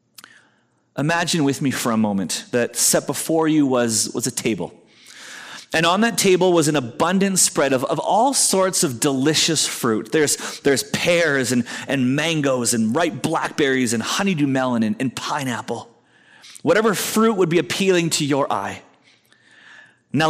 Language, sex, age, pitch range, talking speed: English, male, 30-49, 130-170 Hz, 155 wpm